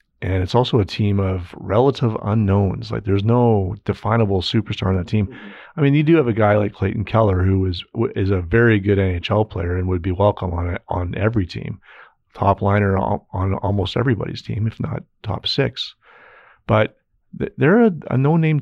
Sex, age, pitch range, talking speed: male, 40-59, 95-115 Hz, 200 wpm